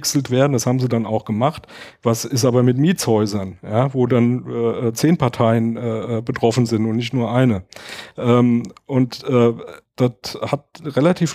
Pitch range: 120-135 Hz